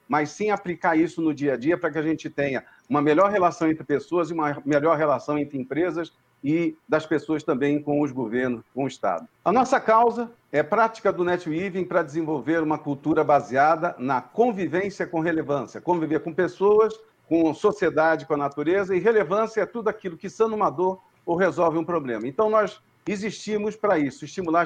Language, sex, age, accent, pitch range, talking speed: Portuguese, male, 50-69, Brazilian, 150-200 Hz, 185 wpm